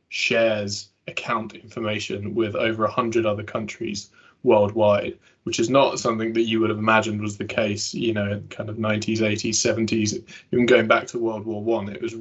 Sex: male